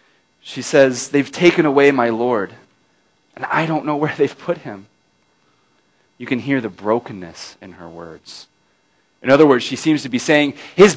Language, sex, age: English, male, 30-49